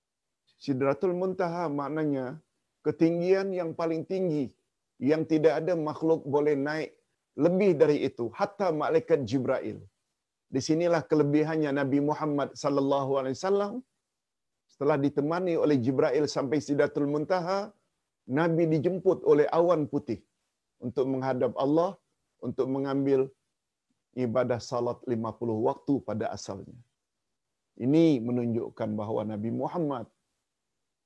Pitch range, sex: 120-155 Hz, male